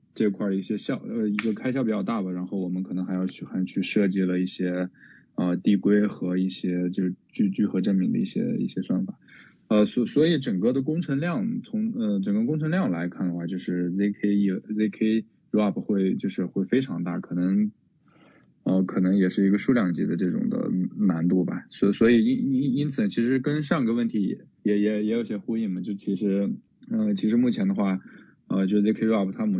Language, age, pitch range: Chinese, 20-39, 95-135 Hz